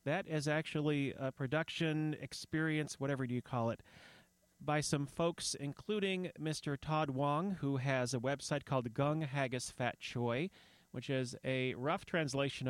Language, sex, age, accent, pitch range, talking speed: English, male, 30-49, American, 130-165 Hz, 145 wpm